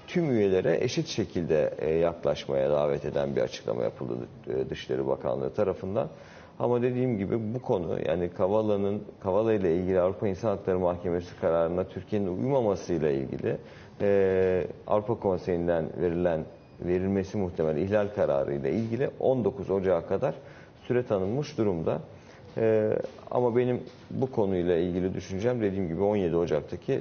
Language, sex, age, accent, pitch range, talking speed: Turkish, male, 50-69, native, 90-110 Hz, 125 wpm